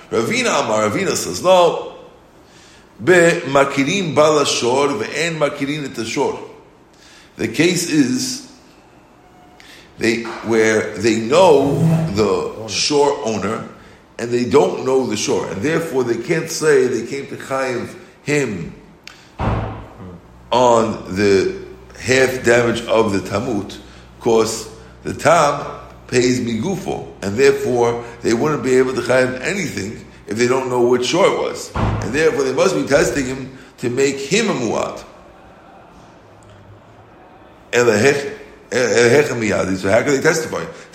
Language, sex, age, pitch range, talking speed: English, male, 60-79, 115-155 Hz, 110 wpm